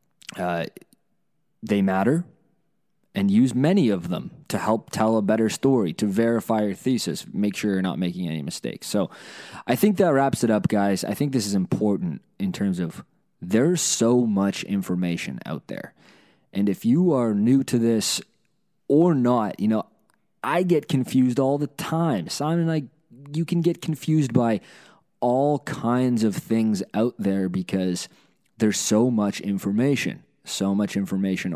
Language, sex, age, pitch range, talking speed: English, male, 20-39, 100-135 Hz, 165 wpm